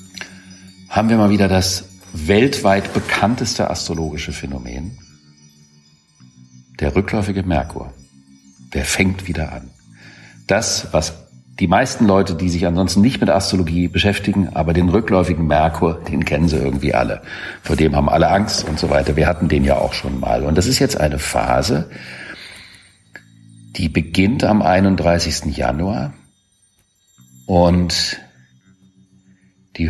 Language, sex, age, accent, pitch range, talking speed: German, male, 50-69, German, 80-100 Hz, 130 wpm